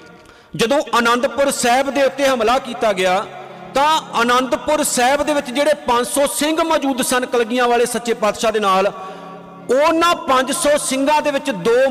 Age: 50-69